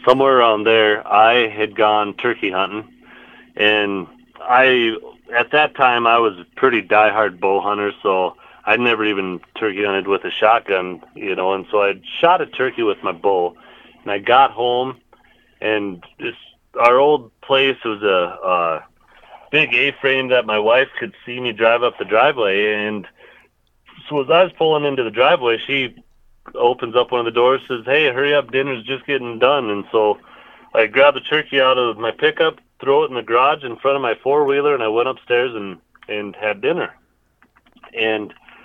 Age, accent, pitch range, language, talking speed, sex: 30-49, American, 105-135 Hz, English, 180 wpm, male